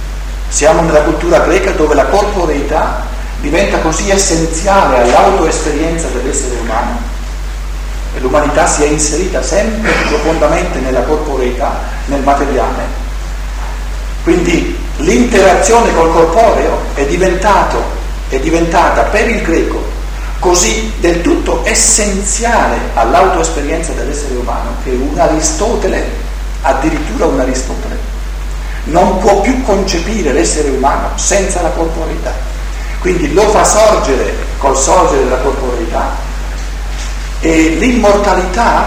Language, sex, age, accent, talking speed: Italian, male, 50-69, native, 105 wpm